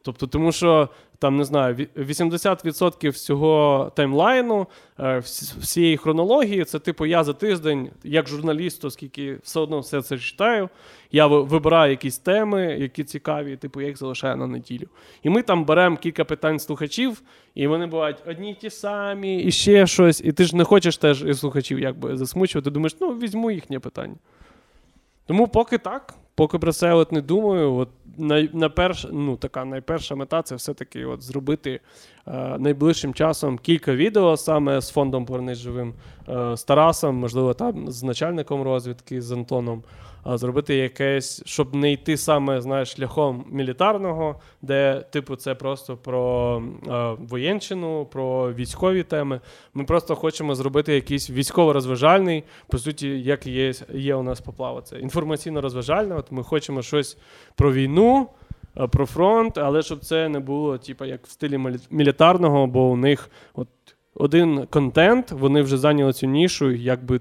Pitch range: 135-165 Hz